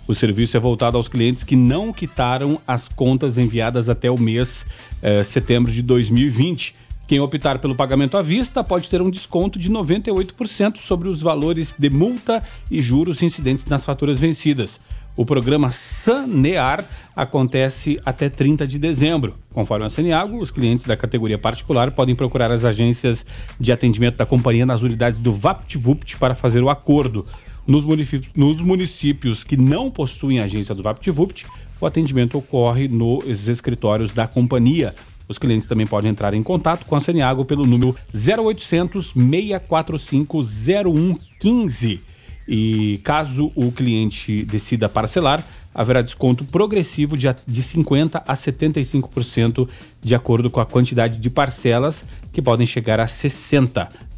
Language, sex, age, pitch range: Portuguese, male, 40-59, 120-150 Hz